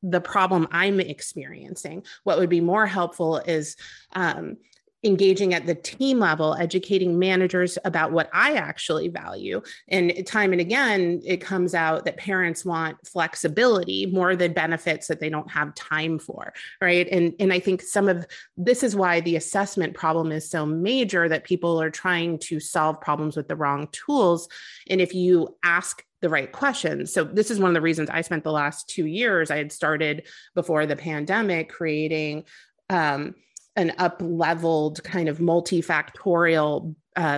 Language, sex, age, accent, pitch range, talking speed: English, female, 30-49, American, 155-185 Hz, 165 wpm